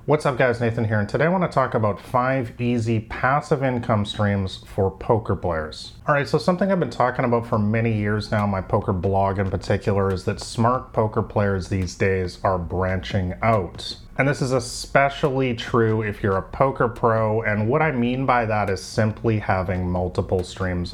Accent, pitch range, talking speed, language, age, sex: American, 105-125 Hz, 190 wpm, English, 30-49, male